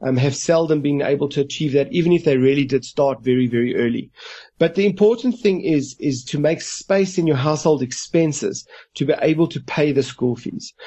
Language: English